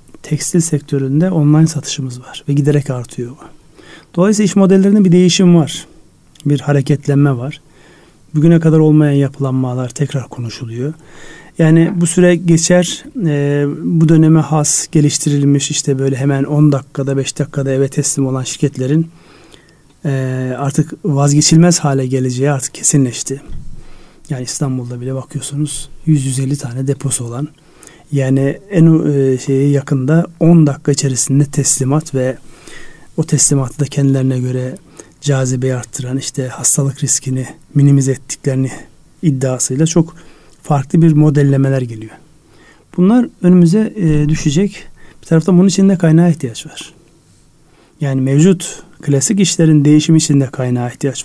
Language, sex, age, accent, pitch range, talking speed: Turkish, male, 40-59, native, 135-160 Hz, 120 wpm